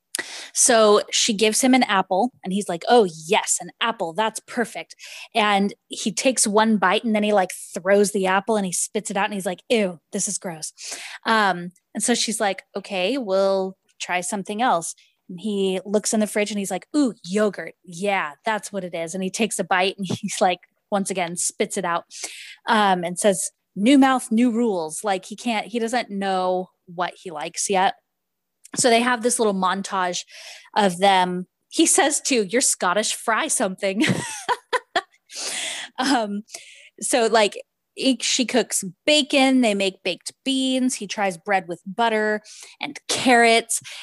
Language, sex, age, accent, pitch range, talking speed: English, female, 20-39, American, 185-230 Hz, 175 wpm